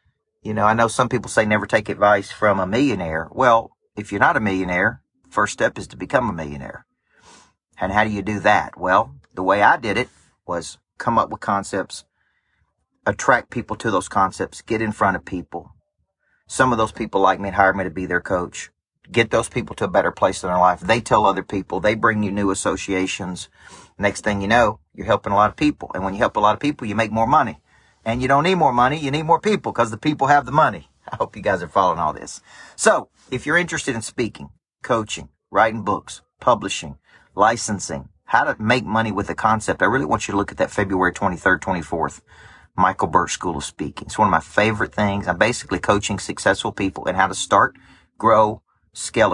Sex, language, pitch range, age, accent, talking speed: male, English, 95-125 Hz, 40-59, American, 220 wpm